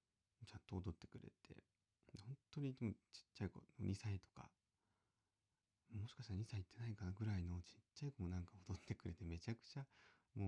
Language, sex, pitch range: Japanese, male, 95-125 Hz